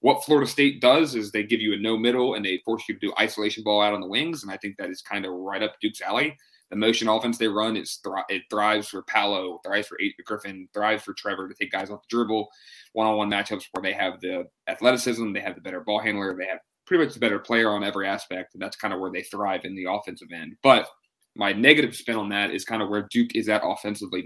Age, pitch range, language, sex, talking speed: 20-39, 105-125 Hz, English, male, 255 wpm